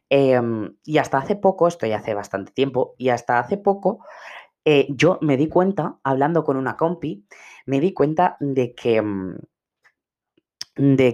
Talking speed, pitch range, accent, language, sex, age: 150 wpm, 125-165 Hz, Spanish, Spanish, female, 20-39